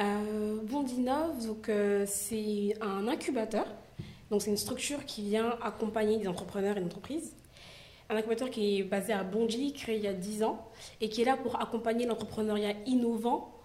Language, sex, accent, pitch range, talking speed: French, female, French, 195-230 Hz, 180 wpm